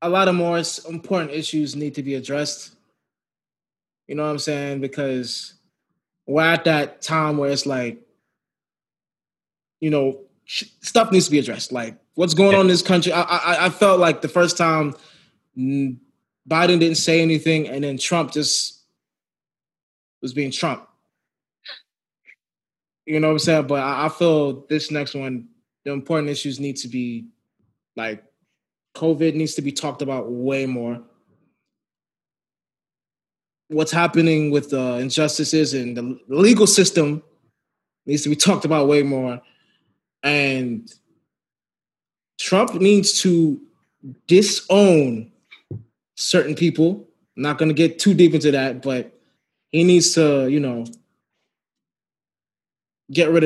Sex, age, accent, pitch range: male, 20-39, American, 135-165 Hz